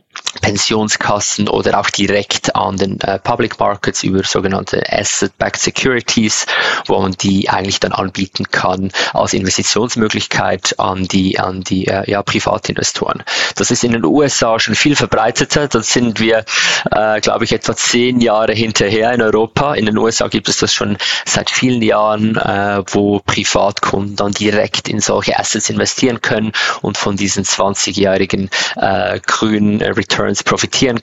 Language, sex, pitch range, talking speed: German, male, 95-110 Hz, 145 wpm